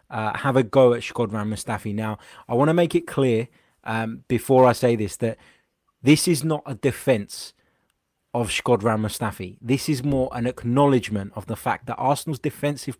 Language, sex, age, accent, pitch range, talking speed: English, male, 20-39, British, 115-135 Hz, 180 wpm